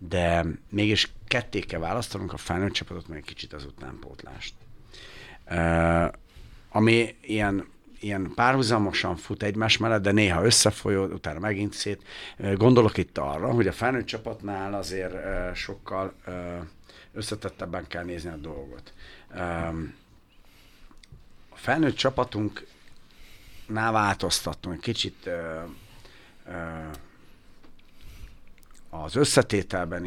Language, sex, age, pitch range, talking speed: Hungarian, male, 60-79, 85-105 Hz, 110 wpm